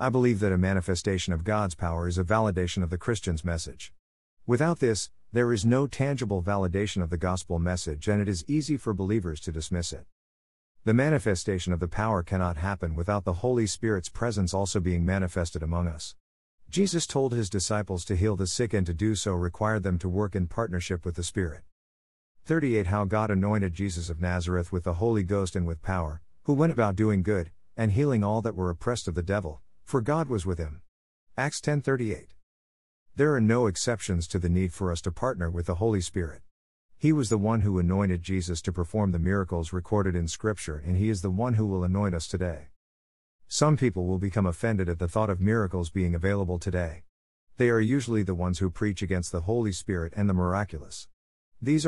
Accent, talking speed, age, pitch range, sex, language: American, 205 wpm, 50-69, 85-110 Hz, male, English